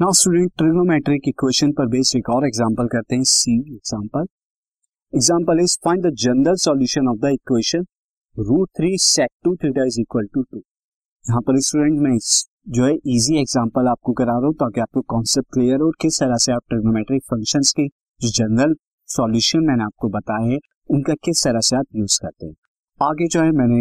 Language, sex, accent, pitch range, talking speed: Hindi, male, native, 125-165 Hz, 155 wpm